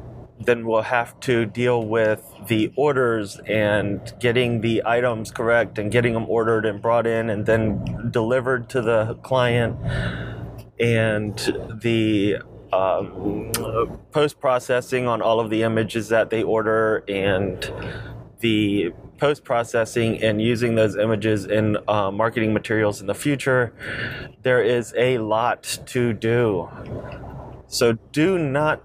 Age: 30-49